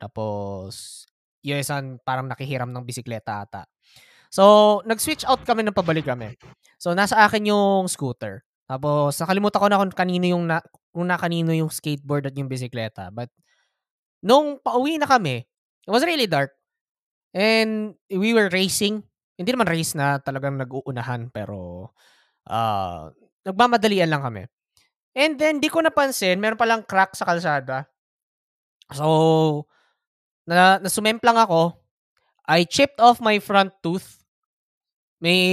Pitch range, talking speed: 135-210 Hz, 135 wpm